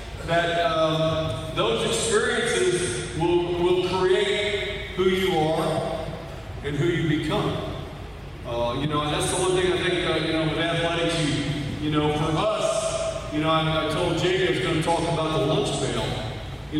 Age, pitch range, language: 40-59, 160-195 Hz, English